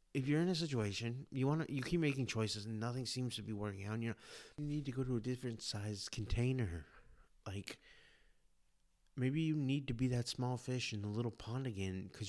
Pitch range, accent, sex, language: 105-130 Hz, American, male, English